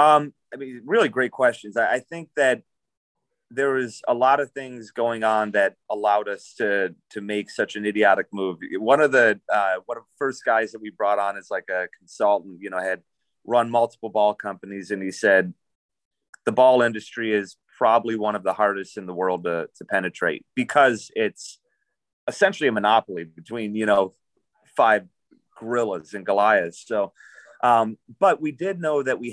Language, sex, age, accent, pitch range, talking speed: English, male, 30-49, American, 105-130 Hz, 185 wpm